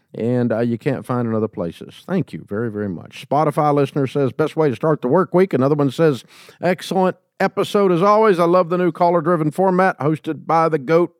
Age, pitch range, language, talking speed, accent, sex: 50-69, 125-165 Hz, English, 220 wpm, American, male